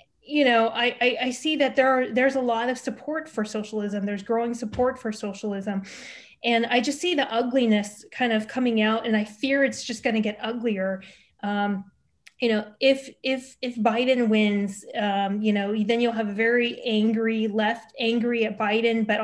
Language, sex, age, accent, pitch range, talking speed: English, female, 20-39, American, 210-240 Hz, 195 wpm